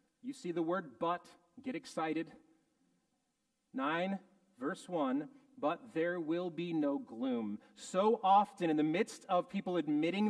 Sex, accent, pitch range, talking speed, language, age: male, American, 195-265 Hz, 140 wpm, English, 40-59